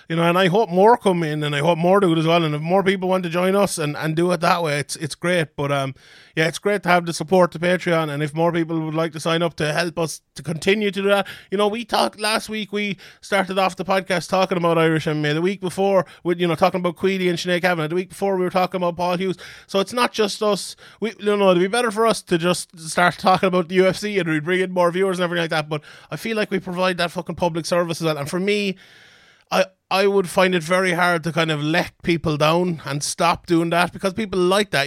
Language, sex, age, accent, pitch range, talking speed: English, male, 30-49, Irish, 165-195 Hz, 280 wpm